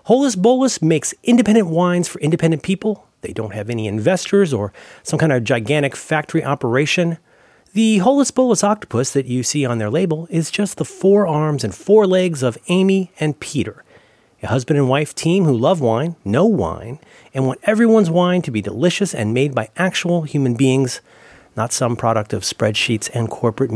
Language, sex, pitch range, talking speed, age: English, male, 125-185 Hz, 180 wpm, 30-49